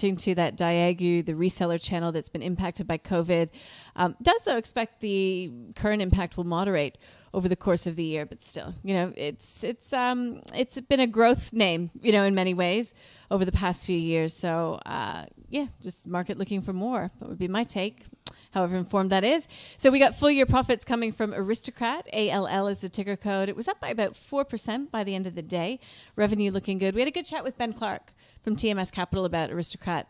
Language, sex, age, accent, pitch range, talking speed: English, female, 30-49, American, 180-235 Hz, 215 wpm